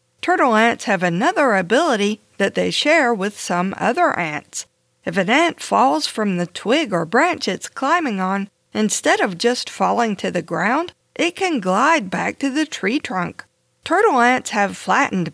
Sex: female